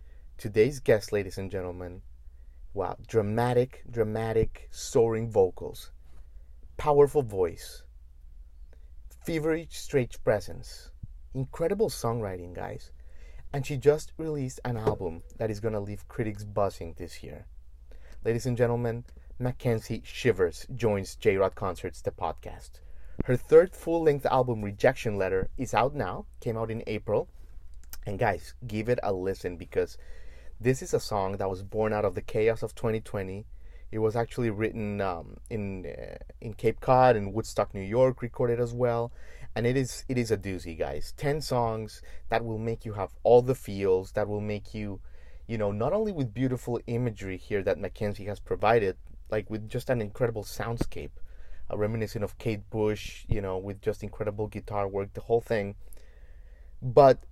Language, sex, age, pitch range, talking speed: English, male, 30-49, 85-120 Hz, 160 wpm